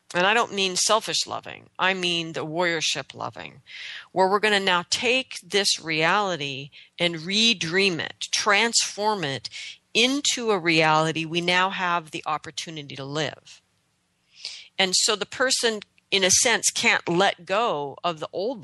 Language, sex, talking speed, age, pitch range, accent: English, female, 150 wpm, 40-59, 155-195 Hz, American